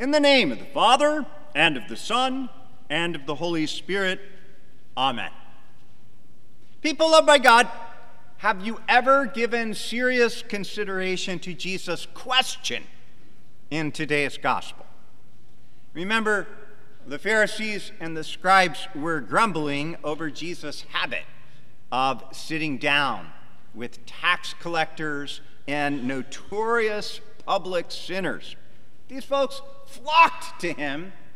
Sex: male